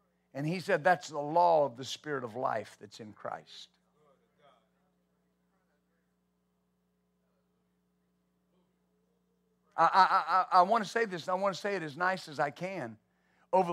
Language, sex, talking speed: English, male, 150 wpm